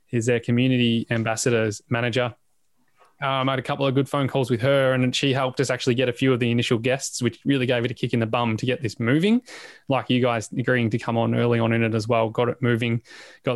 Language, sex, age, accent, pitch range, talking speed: English, male, 20-39, Australian, 115-130 Hz, 255 wpm